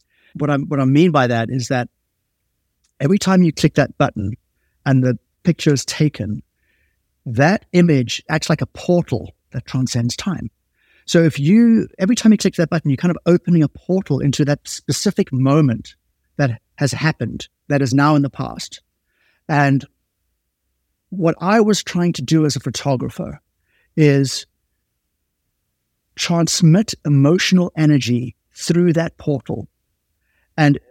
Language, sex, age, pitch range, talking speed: English, male, 50-69, 125-160 Hz, 145 wpm